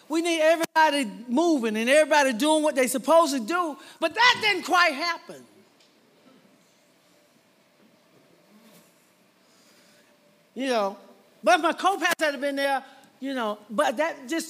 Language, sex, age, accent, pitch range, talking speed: English, male, 40-59, American, 240-330 Hz, 130 wpm